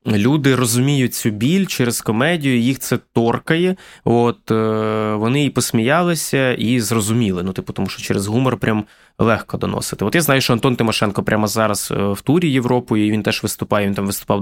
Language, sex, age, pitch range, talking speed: Ukrainian, male, 20-39, 105-130 Hz, 175 wpm